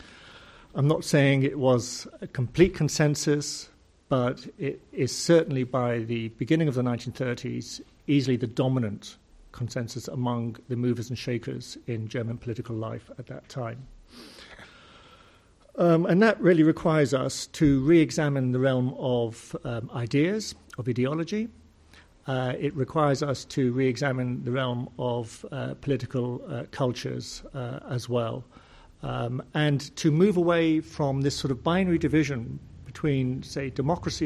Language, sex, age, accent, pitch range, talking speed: English, male, 50-69, British, 120-150 Hz, 140 wpm